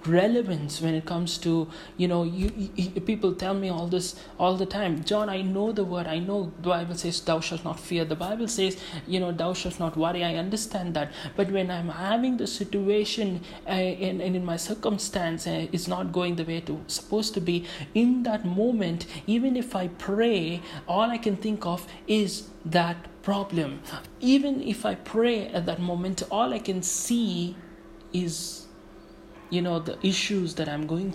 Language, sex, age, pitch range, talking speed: English, male, 30-49, 170-200 Hz, 195 wpm